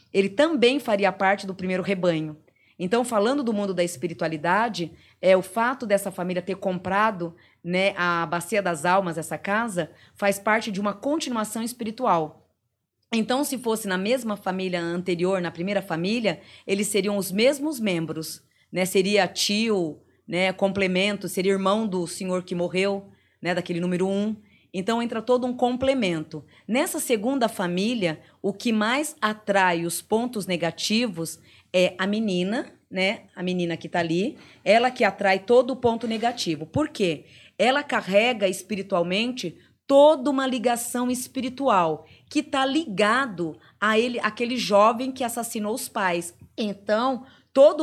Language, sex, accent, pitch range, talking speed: Portuguese, female, Brazilian, 180-235 Hz, 145 wpm